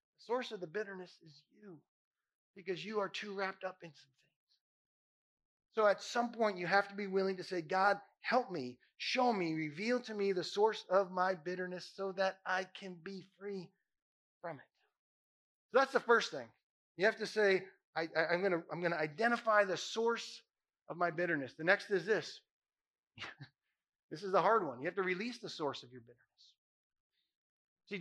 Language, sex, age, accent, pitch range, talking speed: English, male, 30-49, American, 160-225 Hz, 190 wpm